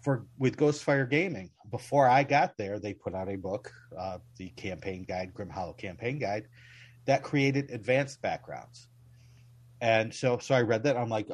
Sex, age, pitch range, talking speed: male, 40-59, 110-125 Hz, 180 wpm